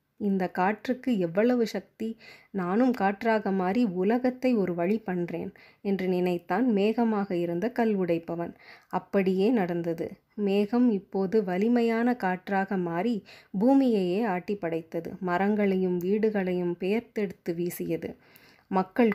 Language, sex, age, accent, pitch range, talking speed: Tamil, female, 20-39, native, 180-225 Hz, 100 wpm